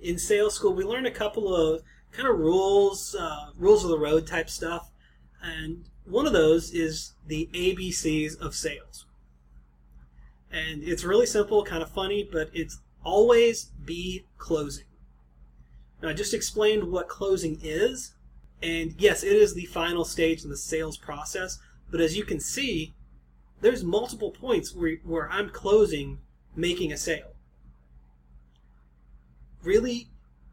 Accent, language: American, English